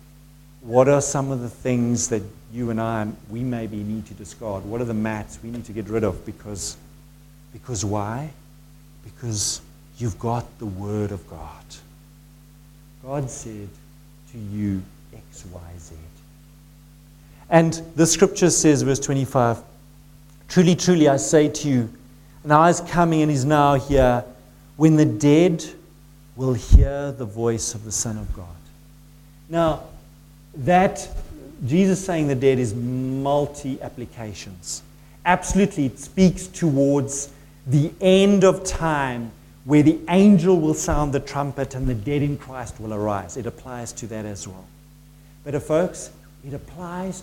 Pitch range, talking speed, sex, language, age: 120-150 Hz, 145 wpm, male, English, 50-69